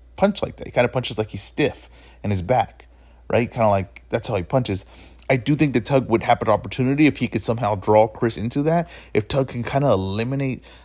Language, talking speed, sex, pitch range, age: English, 245 wpm, male, 100-140 Hz, 20-39